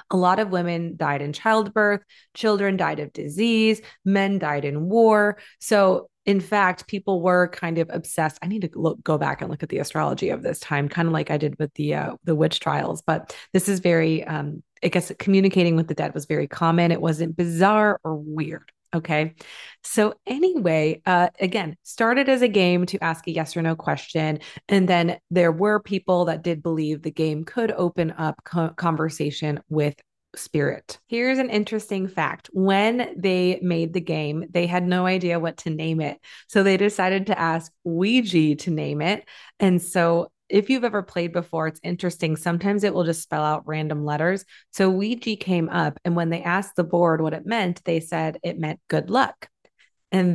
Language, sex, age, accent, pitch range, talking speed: English, female, 30-49, American, 160-195 Hz, 195 wpm